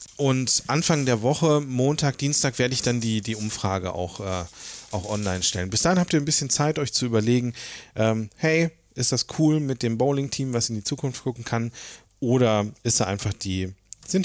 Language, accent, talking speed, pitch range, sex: German, German, 200 wpm, 105-135 Hz, male